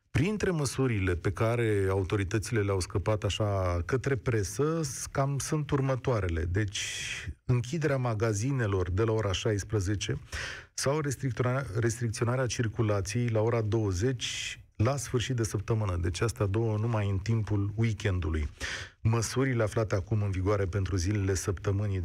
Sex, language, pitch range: male, Romanian, 100-130 Hz